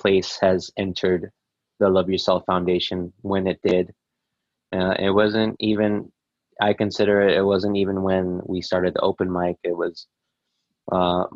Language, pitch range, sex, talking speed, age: English, 90-100 Hz, male, 155 wpm, 20-39